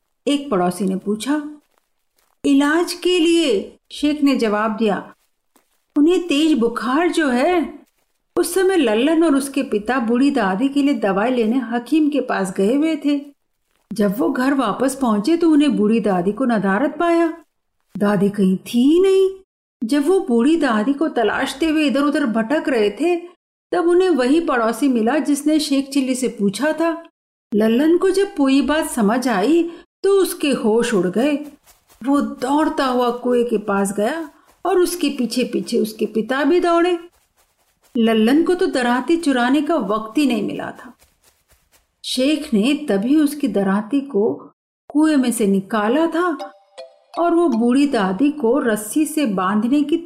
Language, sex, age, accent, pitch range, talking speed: Hindi, female, 50-69, native, 225-320 Hz, 130 wpm